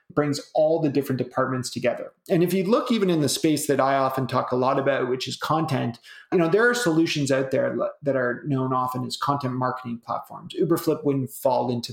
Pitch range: 130-165 Hz